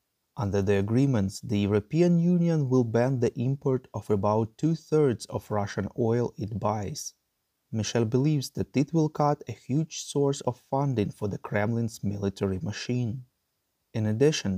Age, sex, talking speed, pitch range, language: 30-49, male, 150 wpm, 105-140 Hz, English